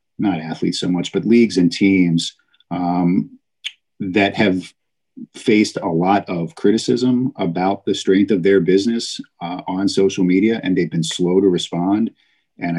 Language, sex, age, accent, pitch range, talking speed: English, male, 50-69, American, 85-105 Hz, 155 wpm